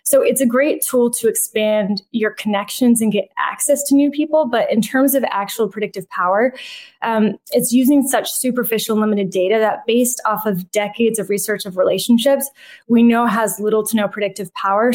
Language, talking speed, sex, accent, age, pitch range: English, 185 wpm, female, American, 20-39, 205-235 Hz